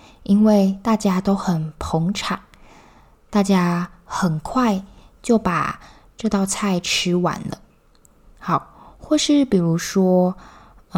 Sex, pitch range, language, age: female, 180-225 Hz, Chinese, 10-29